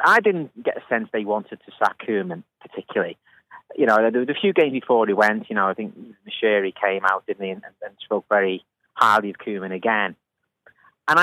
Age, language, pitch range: 30-49, English, 105-160 Hz